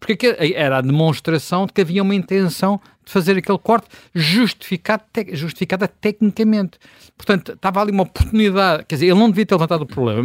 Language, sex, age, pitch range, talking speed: Portuguese, male, 50-69, 115-170 Hz, 180 wpm